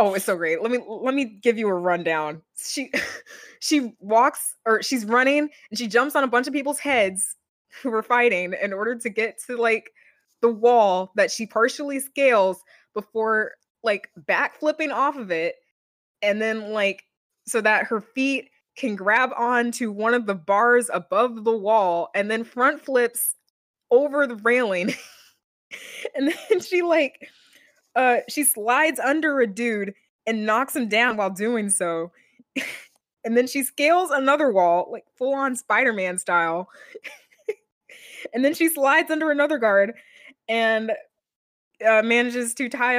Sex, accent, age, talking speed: female, American, 20-39, 160 wpm